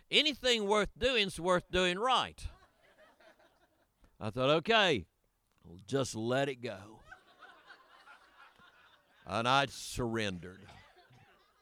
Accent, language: American, English